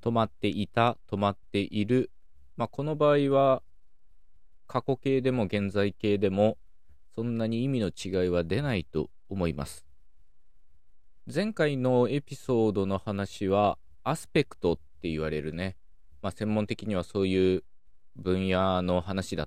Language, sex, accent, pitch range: Japanese, male, native, 80-115 Hz